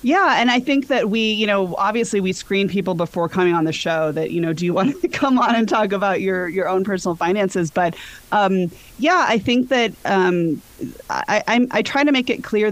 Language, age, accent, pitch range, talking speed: English, 30-49, American, 165-200 Hz, 230 wpm